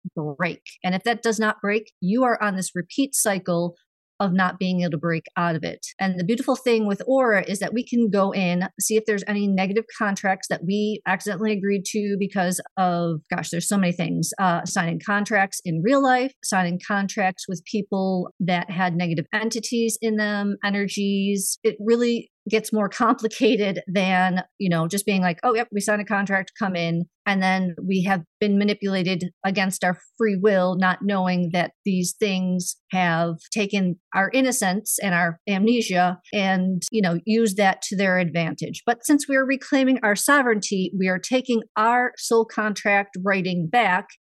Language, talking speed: English, 180 wpm